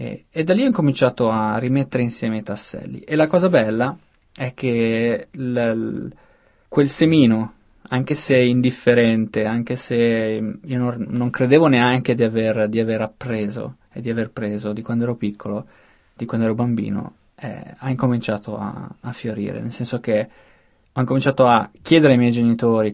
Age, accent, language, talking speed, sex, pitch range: 20-39, native, Italian, 165 wpm, male, 110-125 Hz